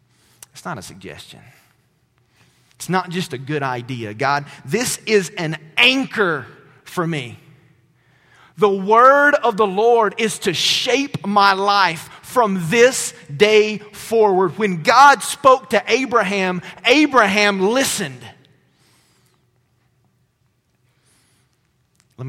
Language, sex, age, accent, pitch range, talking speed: English, male, 40-59, American, 135-220 Hz, 105 wpm